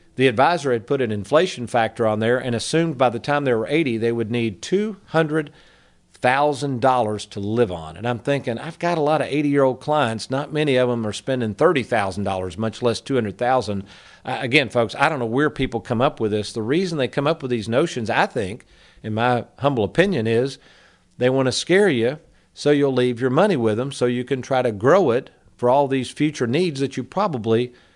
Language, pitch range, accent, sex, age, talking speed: English, 115-150 Hz, American, male, 50-69, 210 wpm